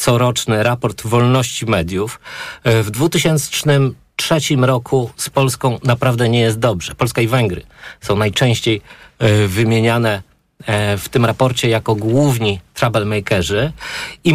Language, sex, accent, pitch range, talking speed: Polish, male, native, 115-145 Hz, 110 wpm